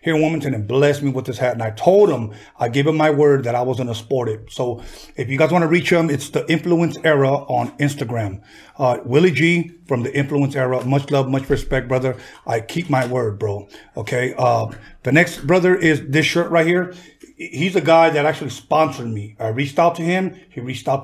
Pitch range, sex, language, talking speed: 130-165 Hz, male, English, 220 wpm